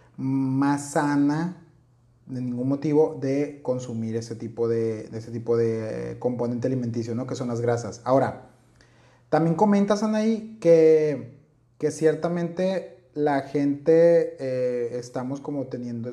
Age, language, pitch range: 30-49, Spanish, 130-160 Hz